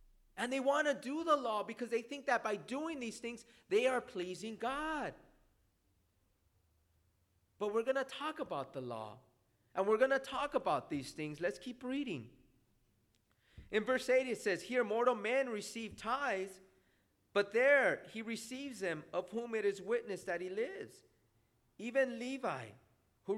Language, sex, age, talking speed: English, male, 30-49, 165 wpm